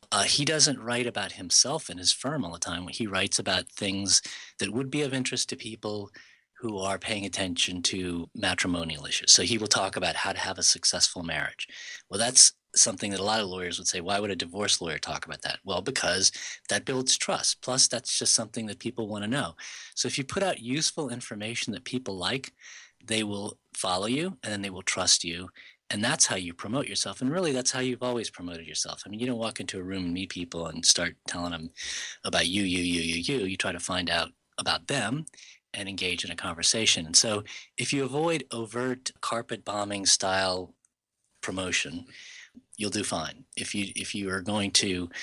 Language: English